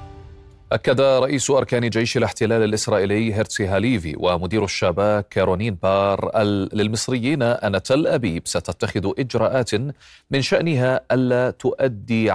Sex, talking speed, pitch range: male, 105 wpm, 100-125 Hz